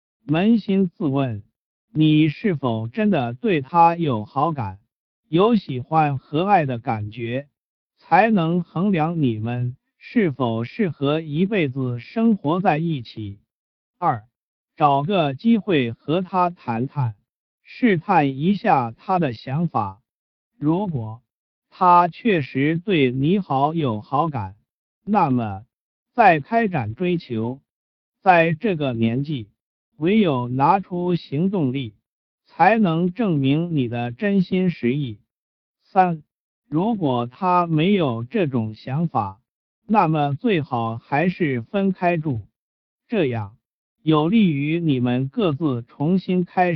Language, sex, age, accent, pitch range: Chinese, male, 50-69, native, 125-180 Hz